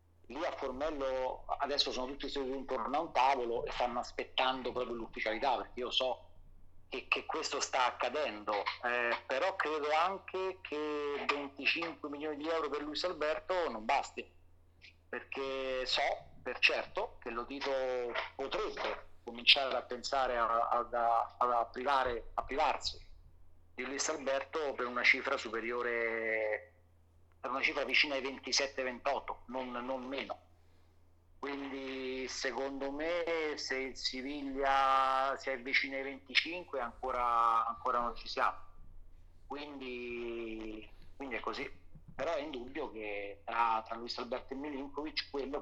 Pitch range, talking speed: 110-135 Hz, 135 wpm